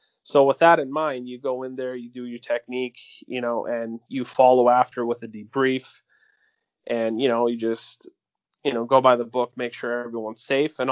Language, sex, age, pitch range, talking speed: English, male, 20-39, 120-140 Hz, 210 wpm